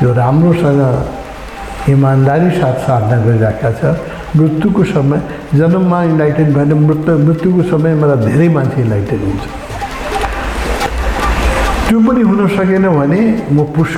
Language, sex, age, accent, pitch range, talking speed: English, male, 60-79, Indian, 130-165 Hz, 50 wpm